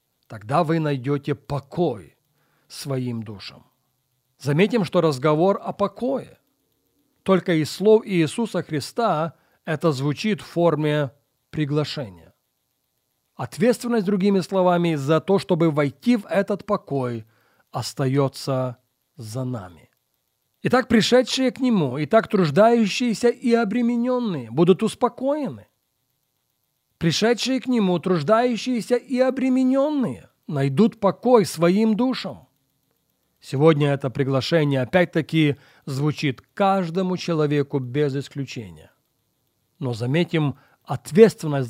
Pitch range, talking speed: 130-195 Hz, 95 wpm